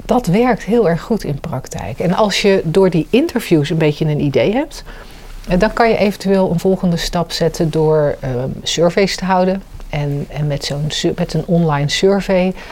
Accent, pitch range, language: Dutch, 155-195 Hz, Dutch